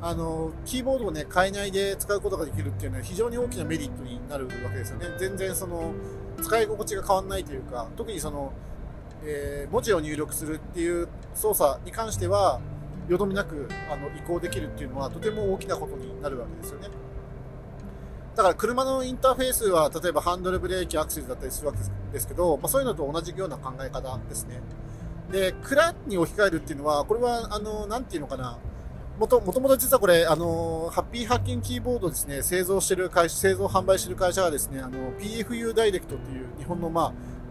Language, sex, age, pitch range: Japanese, male, 40-59, 135-200 Hz